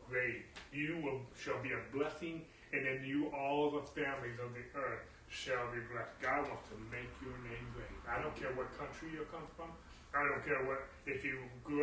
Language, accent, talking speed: English, American, 210 wpm